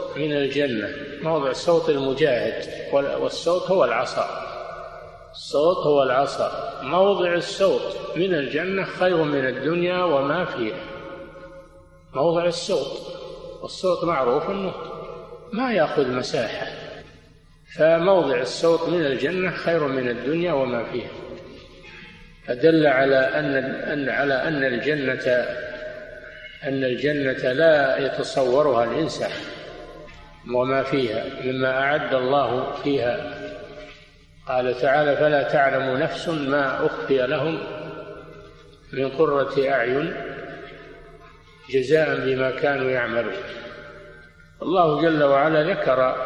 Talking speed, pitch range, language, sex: 95 wpm, 130-180 Hz, Arabic, male